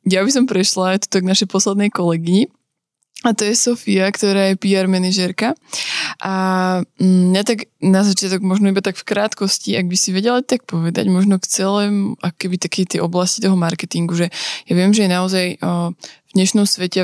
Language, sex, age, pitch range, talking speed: Slovak, female, 20-39, 175-195 Hz, 190 wpm